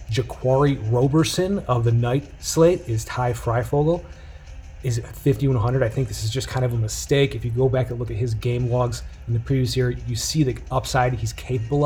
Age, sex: 30-49, male